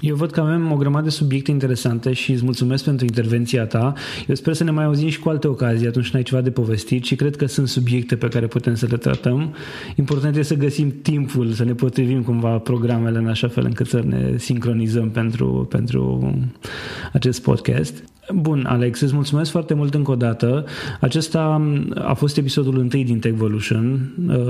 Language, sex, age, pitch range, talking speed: Romanian, male, 20-39, 120-140 Hz, 195 wpm